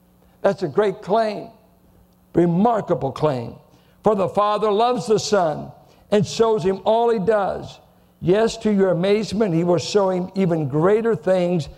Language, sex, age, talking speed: English, male, 60-79, 150 wpm